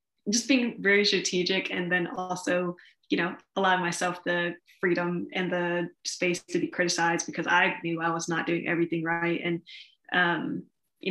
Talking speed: 165 wpm